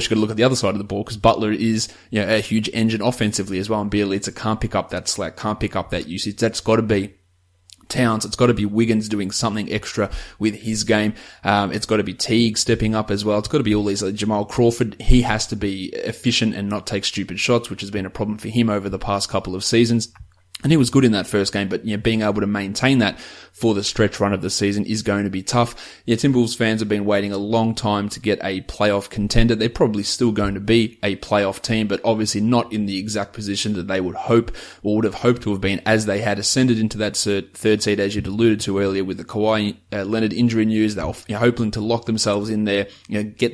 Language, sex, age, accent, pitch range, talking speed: English, male, 20-39, Australian, 100-115 Hz, 255 wpm